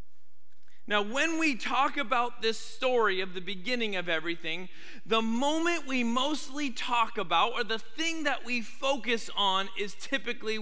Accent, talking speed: American, 155 wpm